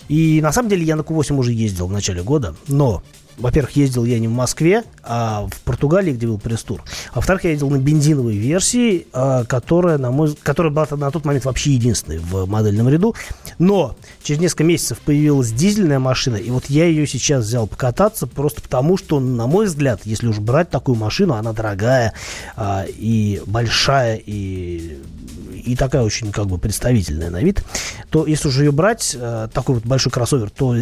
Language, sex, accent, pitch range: Russian, male, native, 110-150 Hz